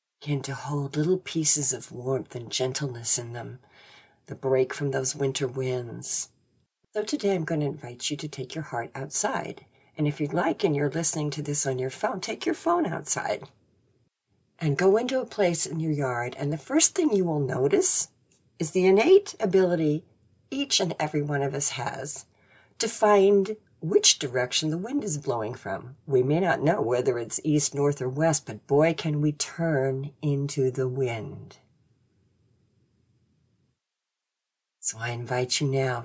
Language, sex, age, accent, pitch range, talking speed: English, female, 50-69, American, 125-165 Hz, 170 wpm